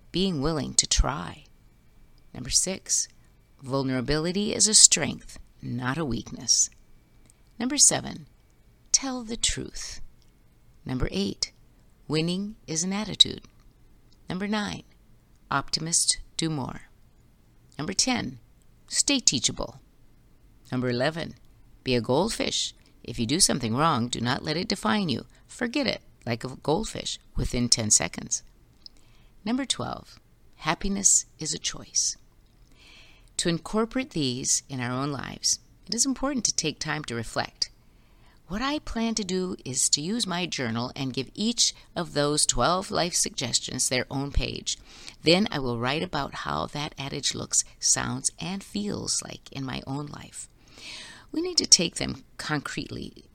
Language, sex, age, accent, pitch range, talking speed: English, female, 50-69, American, 125-200 Hz, 135 wpm